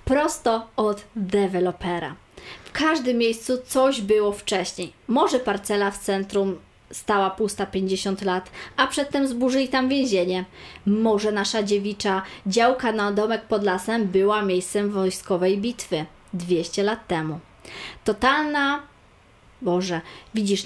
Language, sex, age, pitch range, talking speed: Polish, female, 20-39, 195-250 Hz, 115 wpm